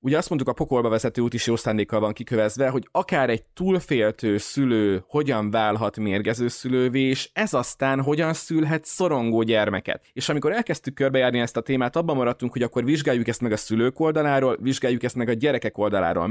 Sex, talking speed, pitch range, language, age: male, 190 wpm, 110-140 Hz, Hungarian, 20-39